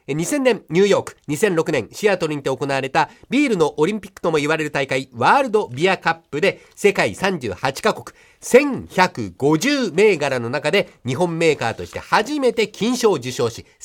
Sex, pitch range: male, 145-210 Hz